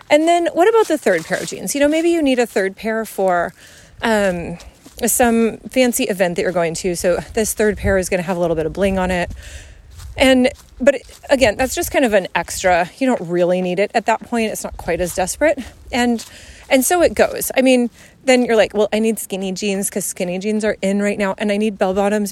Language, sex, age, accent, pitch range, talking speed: English, female, 30-49, American, 195-260 Hz, 245 wpm